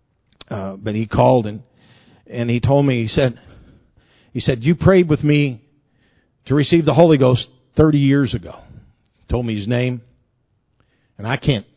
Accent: American